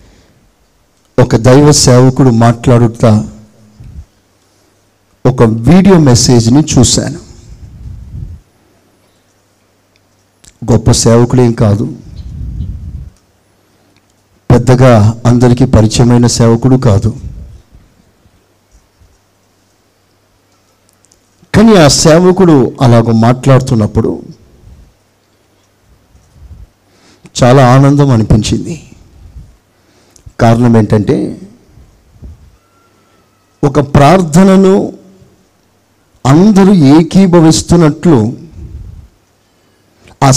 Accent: native